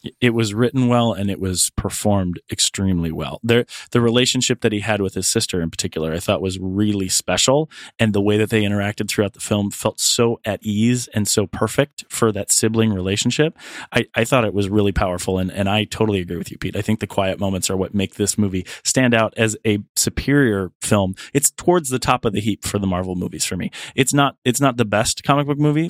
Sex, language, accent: male, English, American